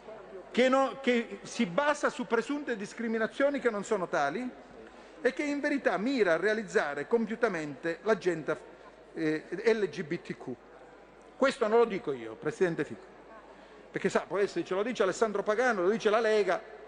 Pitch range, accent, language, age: 185-250 Hz, native, Italian, 50-69